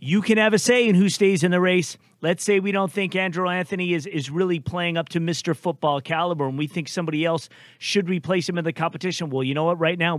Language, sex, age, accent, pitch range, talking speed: English, male, 40-59, American, 145-175 Hz, 260 wpm